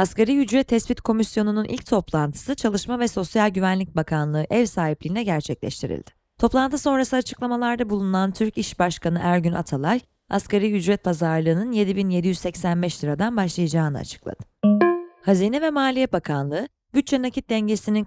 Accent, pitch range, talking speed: native, 170-230 Hz, 125 wpm